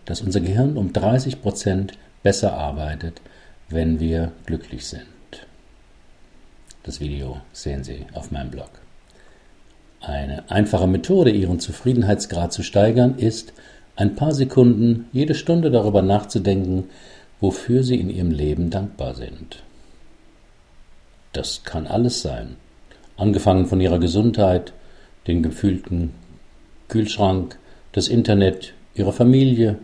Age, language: 50-69, German